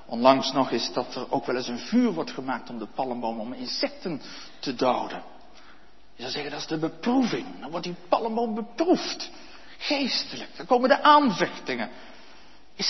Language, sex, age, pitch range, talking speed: Dutch, male, 60-79, 160-255 Hz, 170 wpm